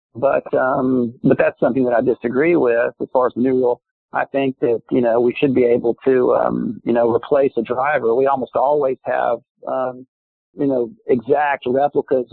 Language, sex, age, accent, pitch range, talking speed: English, male, 50-69, American, 125-150 Hz, 190 wpm